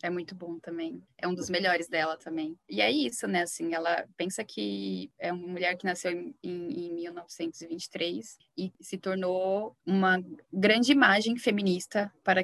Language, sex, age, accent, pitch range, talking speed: Portuguese, female, 10-29, Brazilian, 180-205 Hz, 165 wpm